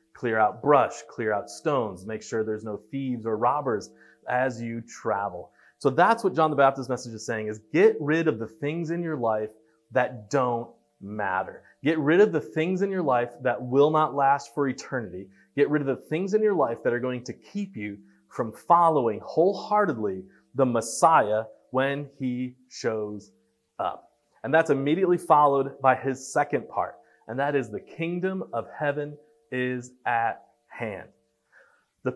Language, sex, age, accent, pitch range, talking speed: English, male, 30-49, American, 115-155 Hz, 175 wpm